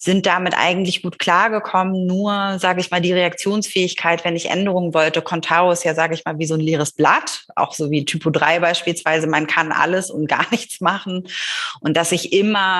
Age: 30-49